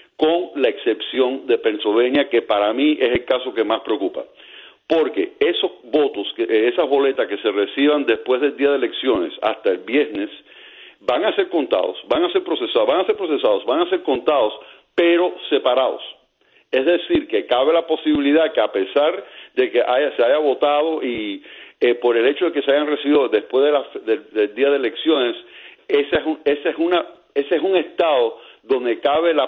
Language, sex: Spanish, male